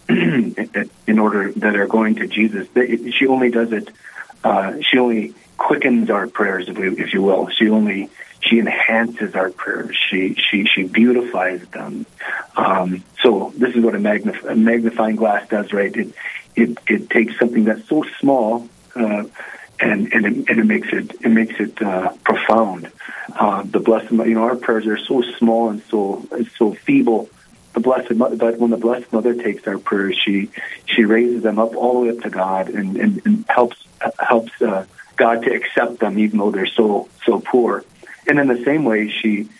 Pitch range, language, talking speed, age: 105-120 Hz, English, 180 wpm, 40-59